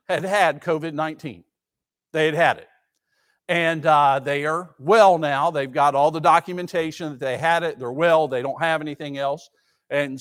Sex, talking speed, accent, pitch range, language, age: male, 175 wpm, American, 145-195 Hz, English, 50-69